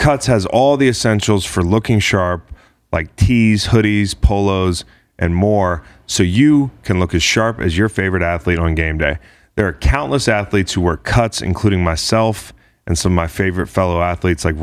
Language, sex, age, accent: English, male, 30-49, American